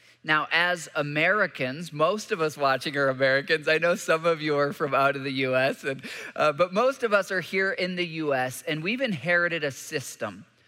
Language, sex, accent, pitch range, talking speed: English, male, American, 140-190 Hz, 195 wpm